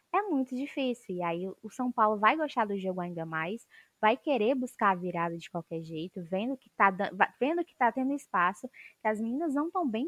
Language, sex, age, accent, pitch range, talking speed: Portuguese, female, 10-29, Brazilian, 190-245 Hz, 220 wpm